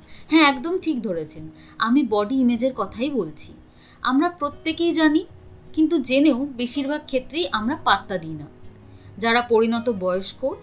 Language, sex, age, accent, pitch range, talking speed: Bengali, female, 30-49, native, 220-315 Hz, 130 wpm